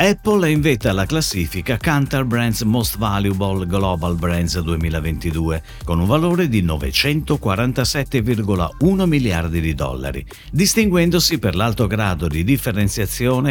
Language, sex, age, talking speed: Italian, male, 50-69, 120 wpm